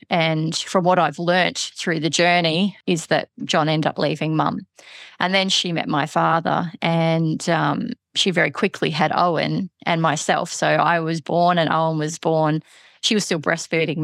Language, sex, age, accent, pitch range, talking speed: English, female, 30-49, Australian, 160-180 Hz, 180 wpm